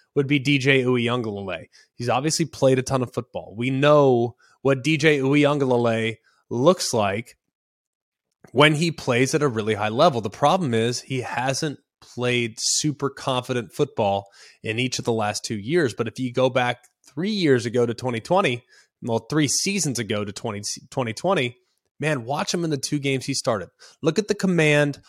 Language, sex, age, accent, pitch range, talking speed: English, male, 20-39, American, 120-155 Hz, 170 wpm